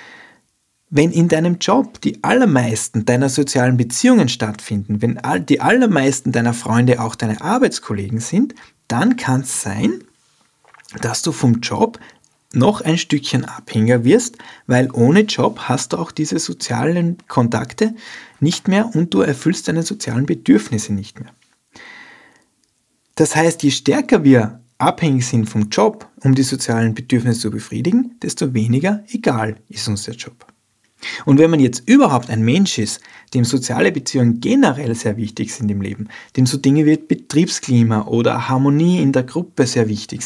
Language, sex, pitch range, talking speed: German, male, 115-160 Hz, 150 wpm